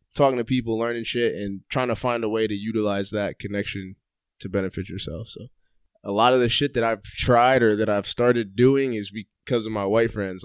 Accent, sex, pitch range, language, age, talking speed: American, male, 105-125 Hz, English, 20-39, 220 wpm